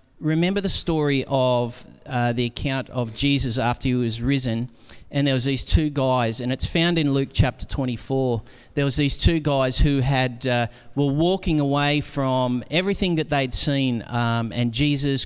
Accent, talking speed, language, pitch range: Australian, 175 wpm, English, 125-150 Hz